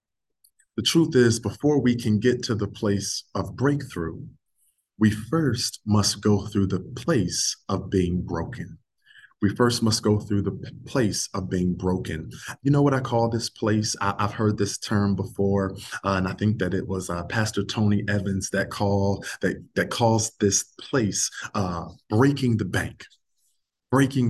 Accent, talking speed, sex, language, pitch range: American, 170 wpm, male, English, 100-120 Hz